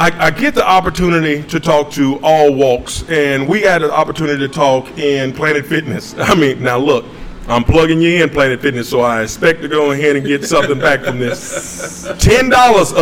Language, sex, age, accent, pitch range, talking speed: English, male, 40-59, American, 145-210 Hz, 195 wpm